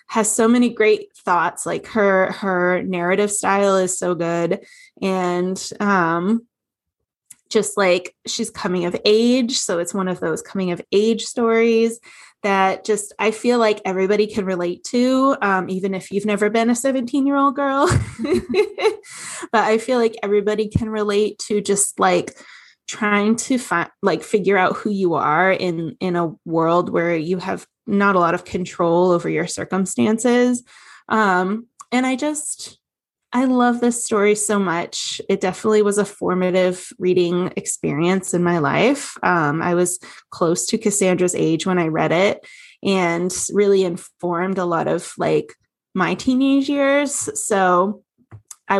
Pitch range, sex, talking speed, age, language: 180-230 Hz, female, 155 wpm, 20-39, English